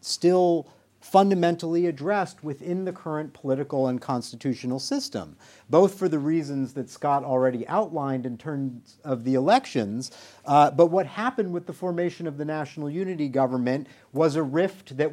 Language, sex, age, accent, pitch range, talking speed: English, male, 50-69, American, 125-160 Hz, 155 wpm